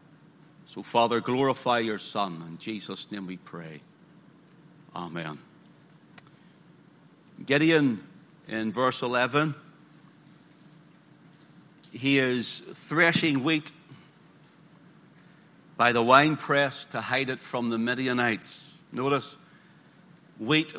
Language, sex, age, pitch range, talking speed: English, male, 60-79, 130-165 Hz, 90 wpm